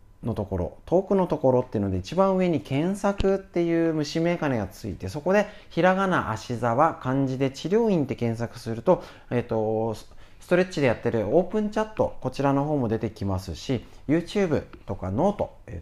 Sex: male